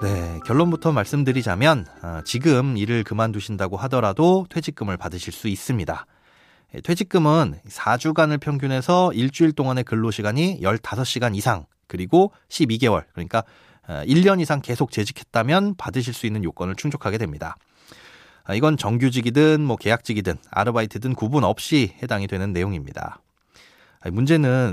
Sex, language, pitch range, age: male, Korean, 105-155 Hz, 30-49